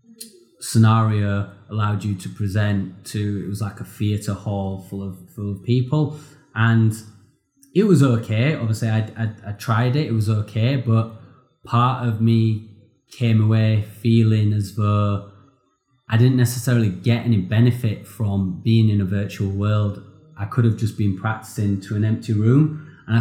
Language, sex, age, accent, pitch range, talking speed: English, male, 20-39, British, 105-120 Hz, 160 wpm